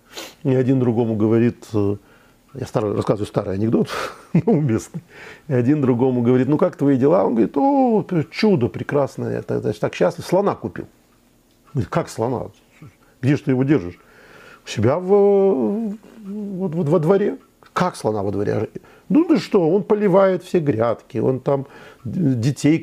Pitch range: 115-185 Hz